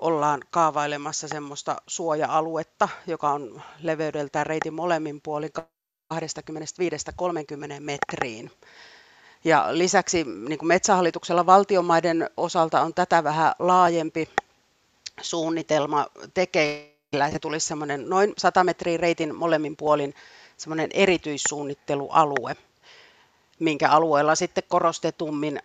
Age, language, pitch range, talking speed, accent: 40-59, Finnish, 145-165 Hz, 80 wpm, native